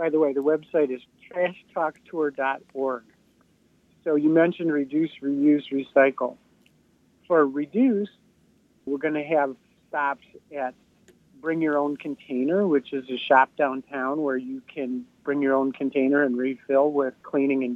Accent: American